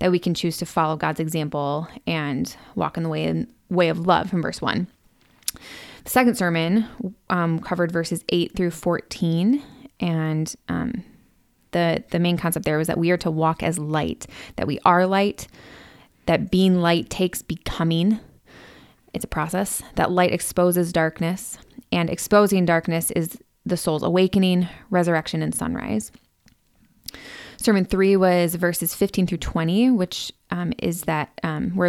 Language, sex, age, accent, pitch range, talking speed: English, female, 20-39, American, 165-185 Hz, 155 wpm